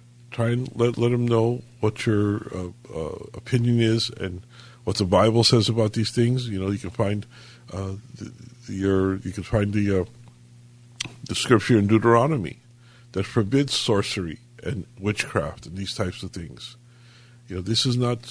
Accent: American